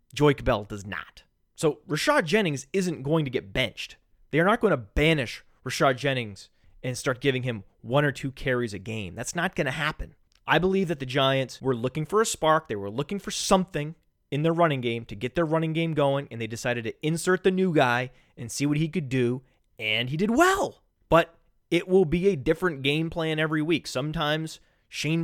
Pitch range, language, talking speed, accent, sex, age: 125-180 Hz, English, 210 wpm, American, male, 30-49